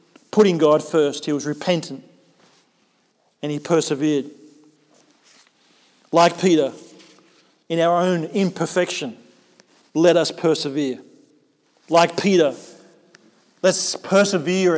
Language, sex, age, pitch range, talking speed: English, male, 40-59, 150-185 Hz, 90 wpm